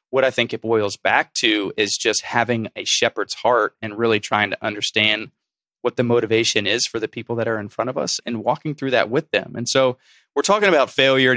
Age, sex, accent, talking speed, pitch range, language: 20-39, male, American, 225 wpm, 110-120 Hz, English